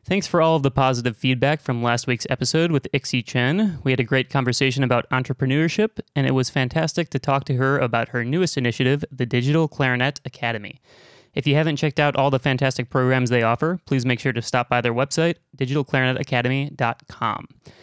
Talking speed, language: 190 wpm, English